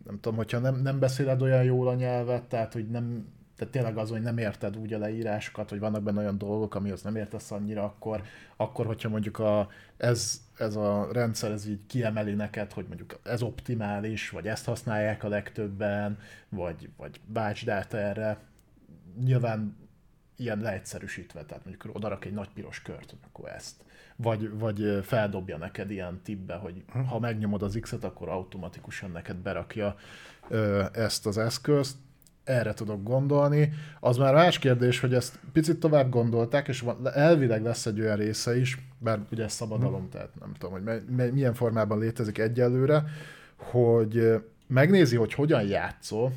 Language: Hungarian